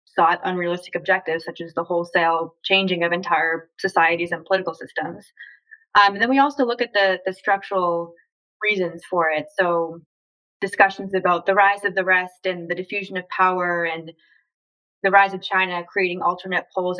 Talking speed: 170 wpm